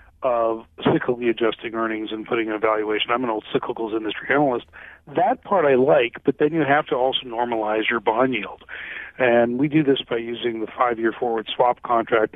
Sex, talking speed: male, 190 wpm